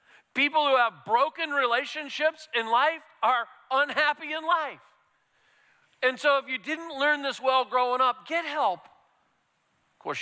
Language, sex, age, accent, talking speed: English, male, 40-59, American, 145 wpm